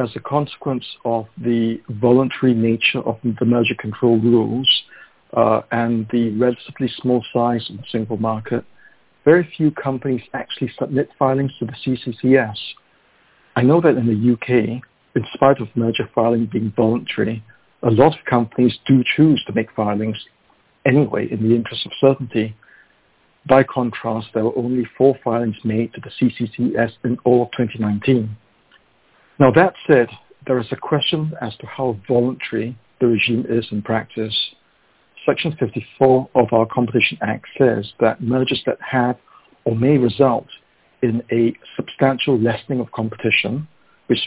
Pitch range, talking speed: 115-130 Hz, 150 wpm